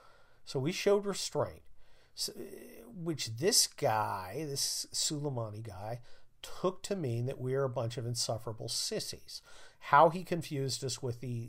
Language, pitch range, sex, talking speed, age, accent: English, 115-140 Hz, male, 140 wpm, 50-69, American